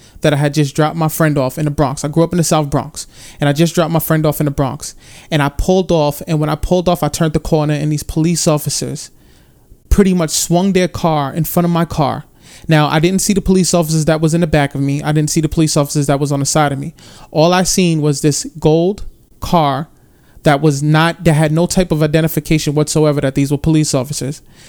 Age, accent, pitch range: 30-49, American, 145-160 Hz